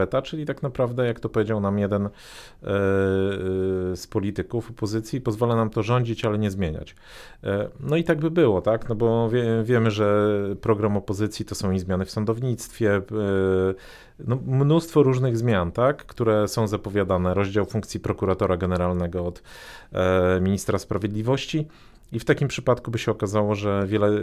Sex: male